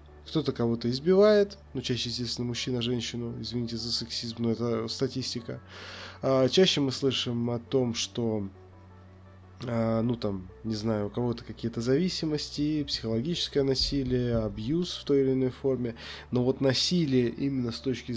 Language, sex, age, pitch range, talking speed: Russian, male, 20-39, 110-130 Hz, 140 wpm